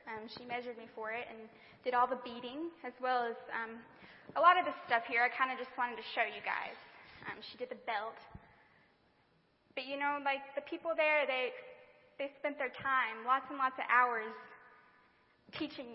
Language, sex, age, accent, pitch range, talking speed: English, female, 10-29, American, 245-310 Hz, 200 wpm